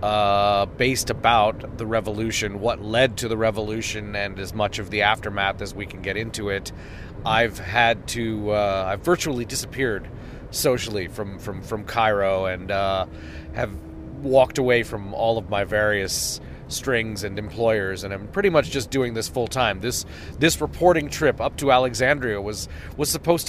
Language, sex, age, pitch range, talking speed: English, male, 30-49, 100-130 Hz, 170 wpm